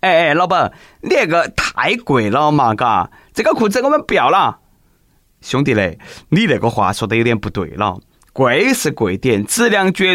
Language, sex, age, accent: Chinese, male, 20-39, native